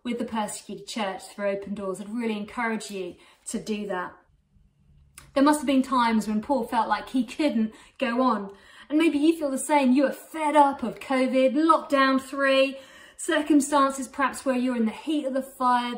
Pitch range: 210-280 Hz